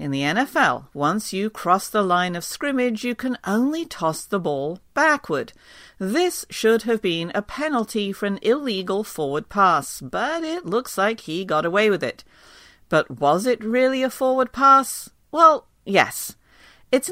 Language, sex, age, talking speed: English, female, 50-69, 165 wpm